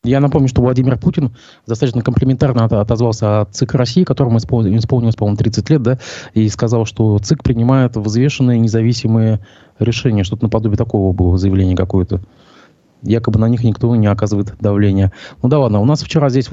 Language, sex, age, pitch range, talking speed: Russian, male, 20-39, 105-135 Hz, 165 wpm